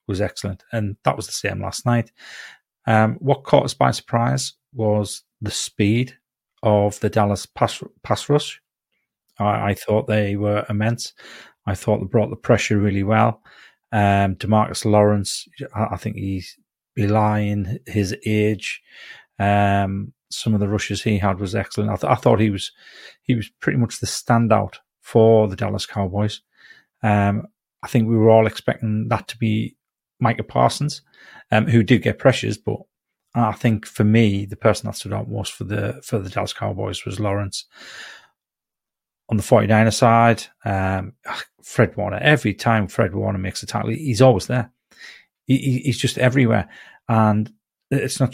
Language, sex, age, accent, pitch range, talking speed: English, male, 30-49, British, 100-115 Hz, 170 wpm